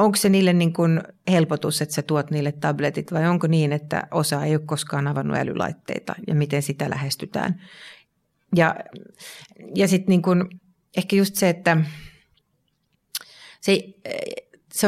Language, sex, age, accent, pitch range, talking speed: Finnish, female, 30-49, native, 150-175 Hz, 140 wpm